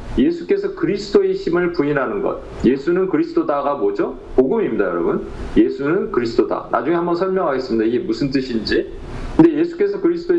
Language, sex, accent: Korean, male, native